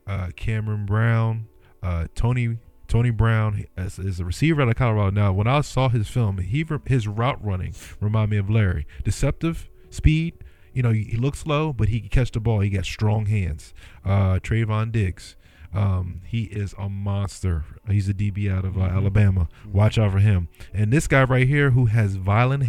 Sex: male